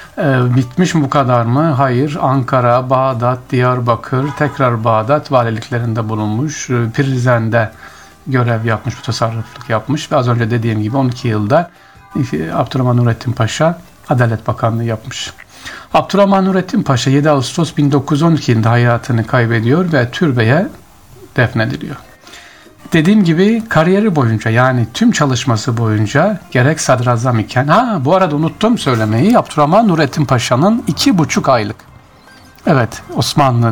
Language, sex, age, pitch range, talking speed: Turkish, male, 60-79, 120-150 Hz, 120 wpm